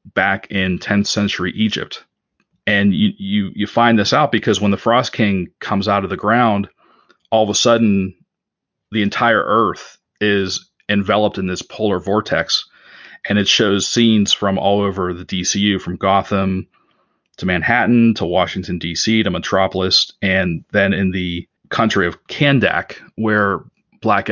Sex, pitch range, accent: male, 95-115 Hz, American